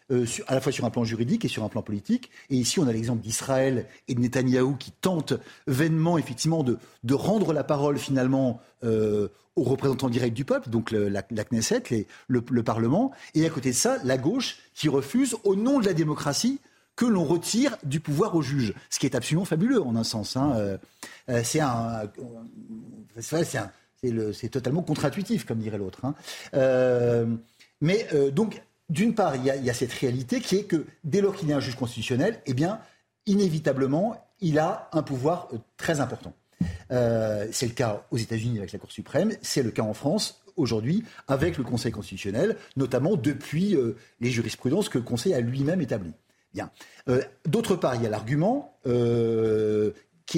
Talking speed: 195 wpm